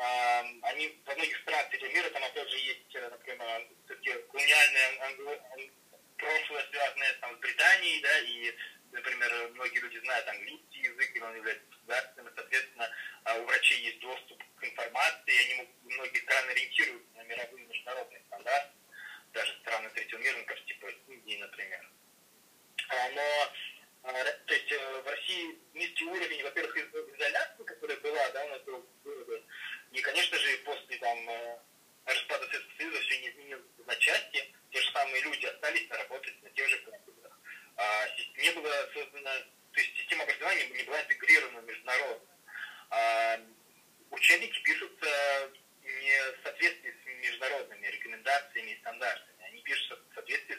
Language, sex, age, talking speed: Amharic, male, 30-49, 125 wpm